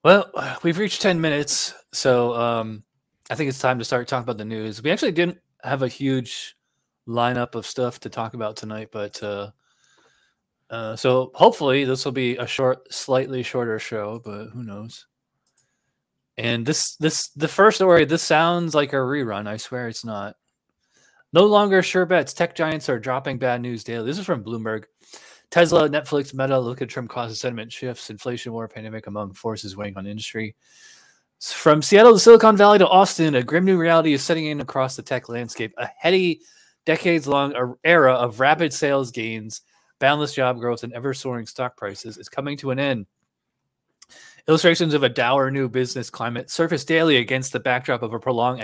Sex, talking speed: male, 180 wpm